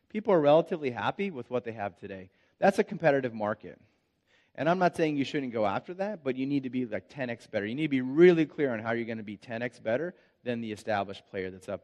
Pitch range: 110-155 Hz